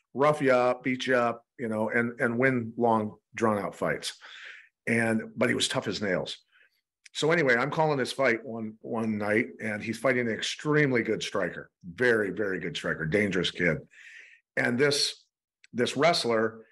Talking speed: 170 wpm